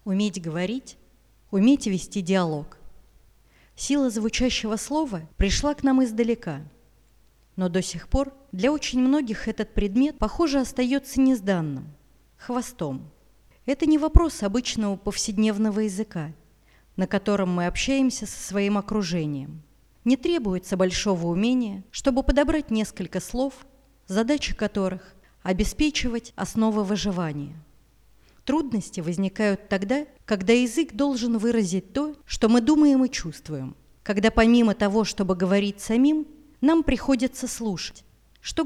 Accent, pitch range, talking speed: native, 190-255 Hz, 115 wpm